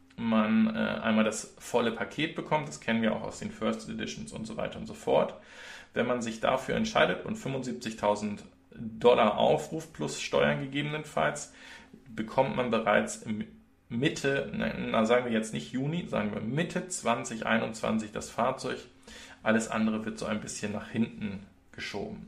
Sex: male